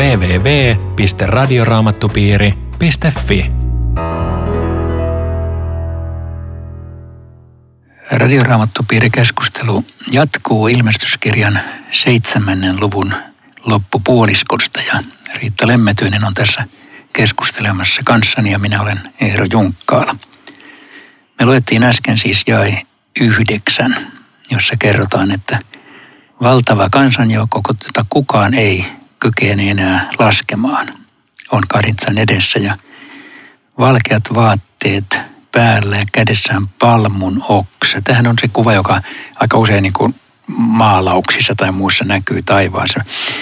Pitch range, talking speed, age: 95-120 Hz, 85 wpm, 60-79